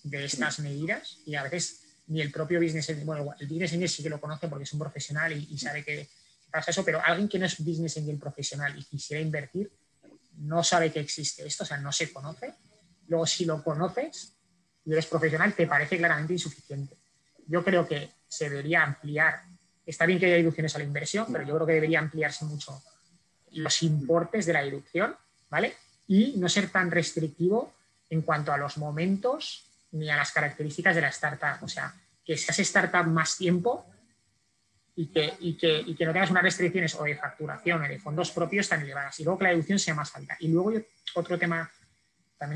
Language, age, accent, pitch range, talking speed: Spanish, 20-39, Spanish, 150-175 Hz, 200 wpm